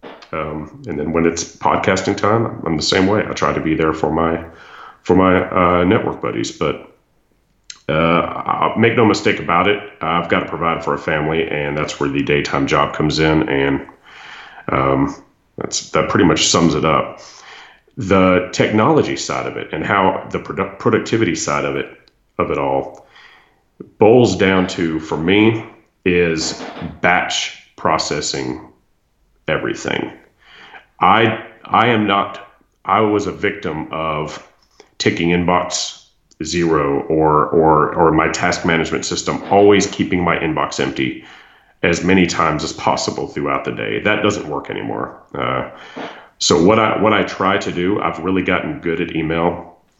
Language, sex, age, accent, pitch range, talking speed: English, male, 40-59, American, 75-95 Hz, 155 wpm